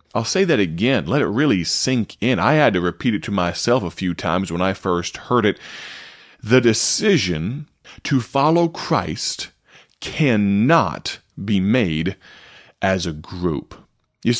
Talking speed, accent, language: 150 wpm, American, English